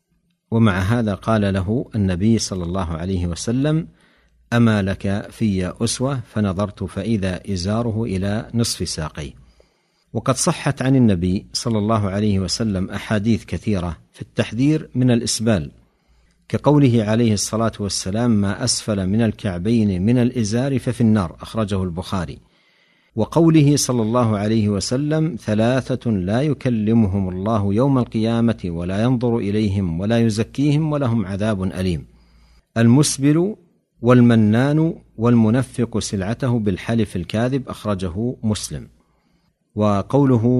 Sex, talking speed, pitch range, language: male, 110 wpm, 95-120 Hz, Arabic